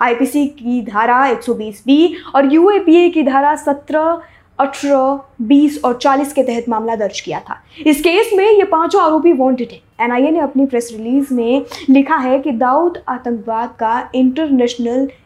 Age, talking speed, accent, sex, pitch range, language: 20-39, 160 wpm, native, female, 245-310 Hz, Hindi